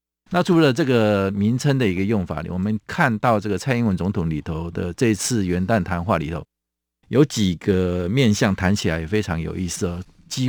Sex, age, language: male, 50-69, Chinese